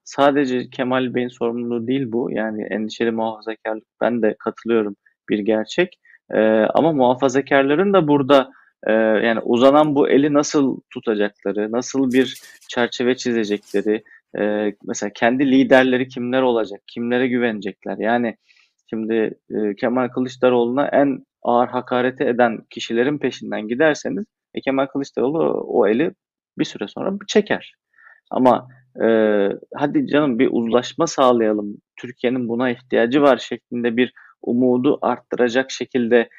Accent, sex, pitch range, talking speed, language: native, male, 115-135 Hz, 125 wpm, Turkish